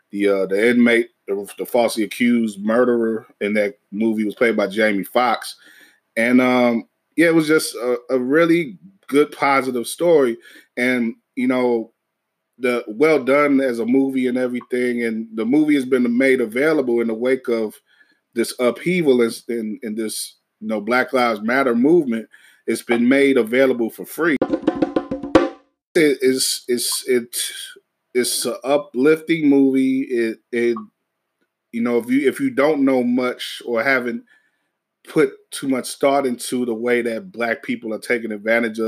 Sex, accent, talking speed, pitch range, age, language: male, American, 155 wpm, 115-135 Hz, 20-39, English